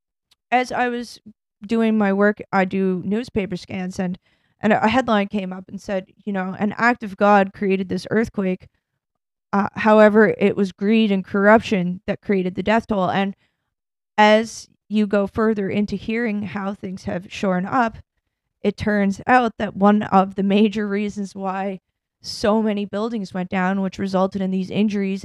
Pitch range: 195-220 Hz